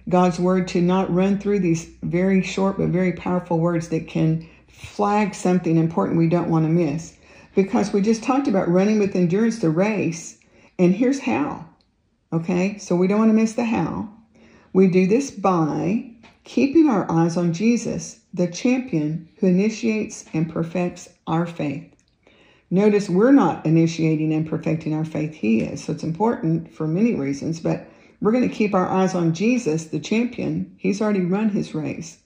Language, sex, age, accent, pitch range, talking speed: English, female, 40-59, American, 165-205 Hz, 175 wpm